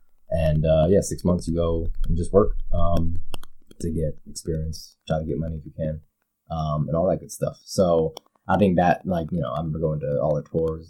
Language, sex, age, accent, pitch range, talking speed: English, male, 20-39, American, 75-85 Hz, 225 wpm